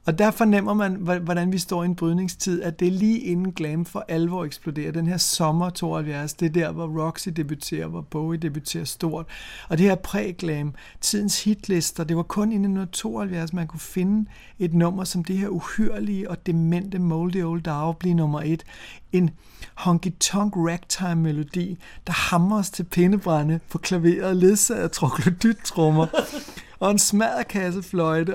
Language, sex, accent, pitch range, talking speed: Danish, male, native, 165-195 Hz, 165 wpm